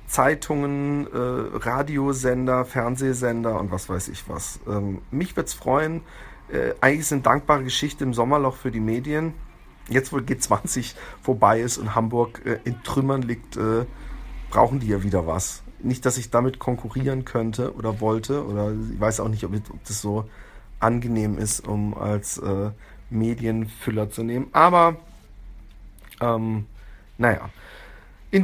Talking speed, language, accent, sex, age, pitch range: 150 wpm, German, German, male, 40-59, 110-135 Hz